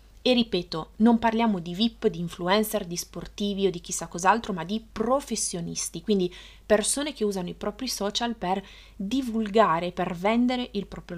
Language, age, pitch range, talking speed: Italian, 20-39, 185-235 Hz, 160 wpm